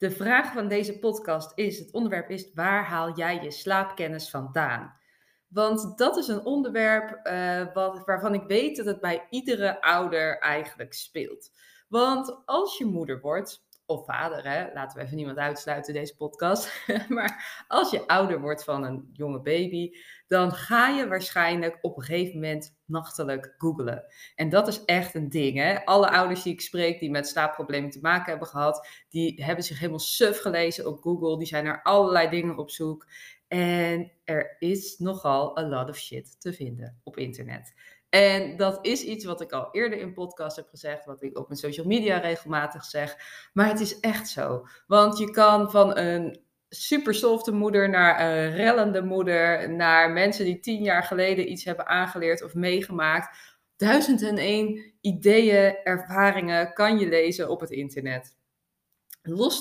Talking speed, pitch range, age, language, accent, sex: 170 wpm, 155-205 Hz, 20-39, Dutch, Dutch, female